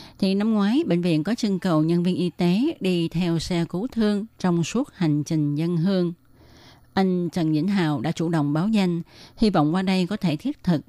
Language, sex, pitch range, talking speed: Vietnamese, female, 155-190 Hz, 220 wpm